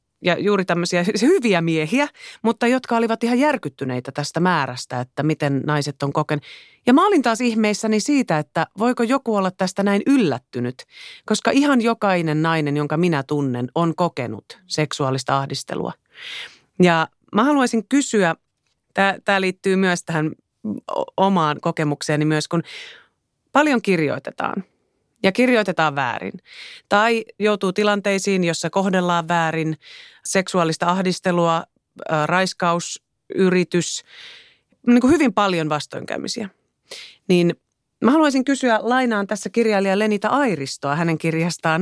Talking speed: 120 wpm